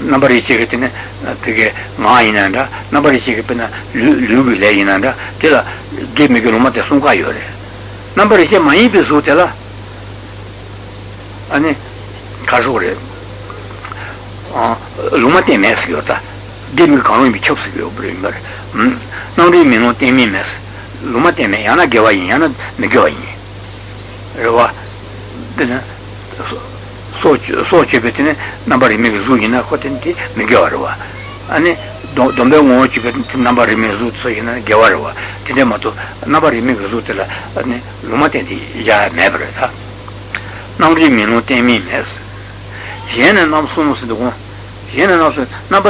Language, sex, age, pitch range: Italian, male, 60-79, 100-120 Hz